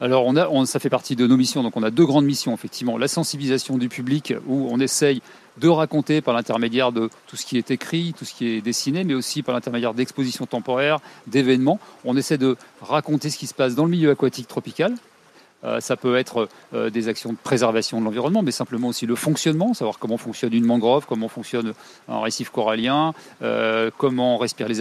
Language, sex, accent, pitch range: French, male, French, 120-145 Hz